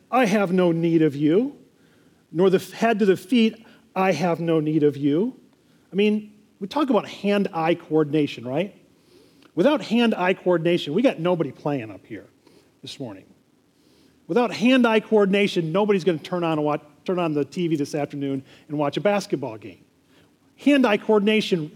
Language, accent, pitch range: English, American, 165-215 Hz